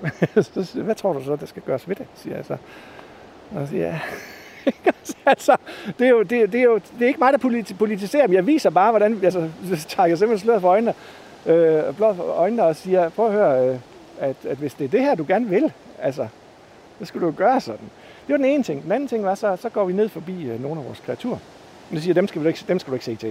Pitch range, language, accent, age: 165-235 Hz, Danish, native, 60-79